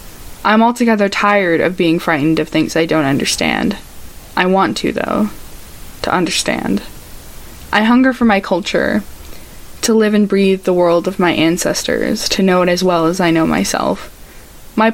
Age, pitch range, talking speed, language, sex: 20-39, 170-205 Hz, 165 wpm, English, female